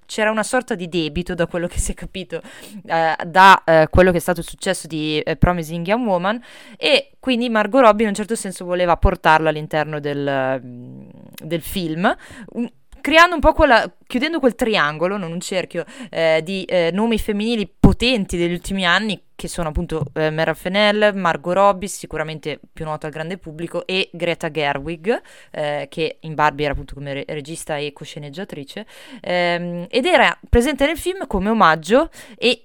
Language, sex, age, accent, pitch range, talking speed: Italian, female, 20-39, native, 160-220 Hz, 170 wpm